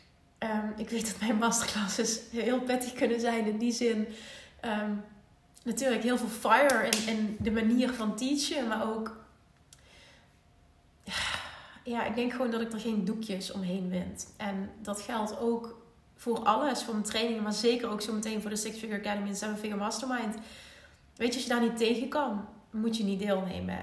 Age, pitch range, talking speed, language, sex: 30-49, 210-245 Hz, 180 wpm, Dutch, female